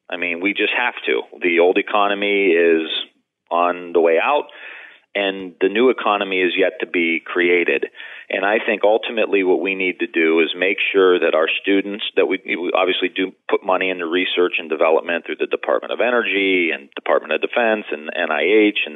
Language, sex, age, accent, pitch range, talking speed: English, male, 40-59, American, 95-115 Hz, 195 wpm